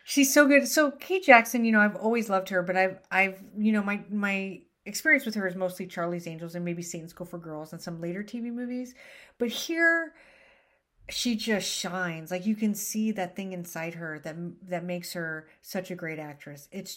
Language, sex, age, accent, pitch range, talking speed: English, female, 40-59, American, 170-210 Hz, 210 wpm